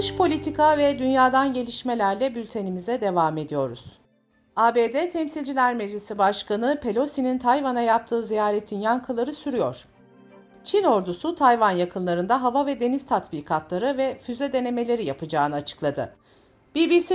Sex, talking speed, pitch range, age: female, 110 wpm, 185-275 Hz, 50-69